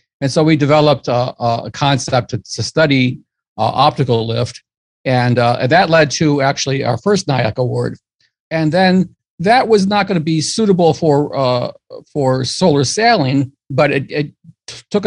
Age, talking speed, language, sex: 50-69, 165 wpm, English, male